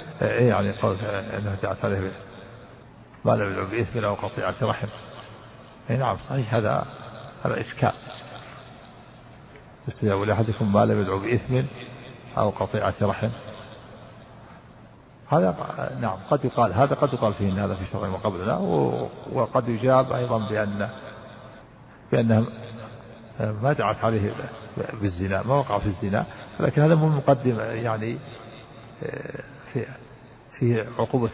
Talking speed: 115 wpm